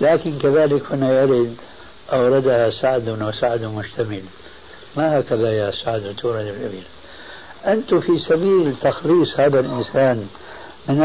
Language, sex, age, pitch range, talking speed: Arabic, male, 60-79, 125-165 Hz, 110 wpm